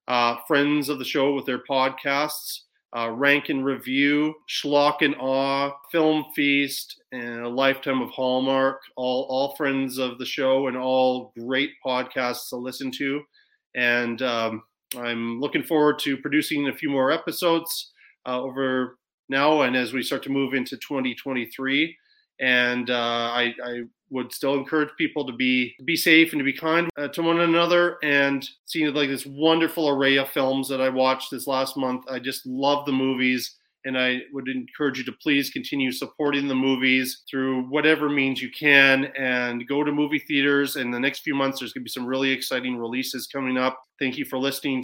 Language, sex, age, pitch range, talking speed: English, male, 30-49, 125-145 Hz, 180 wpm